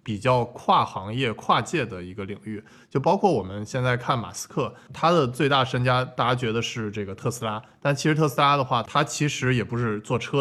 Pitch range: 105-130 Hz